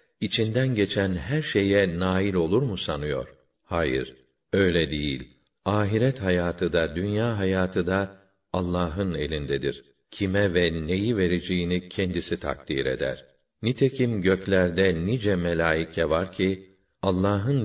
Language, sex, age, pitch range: Turkish, male, 50-69, 85-100 Hz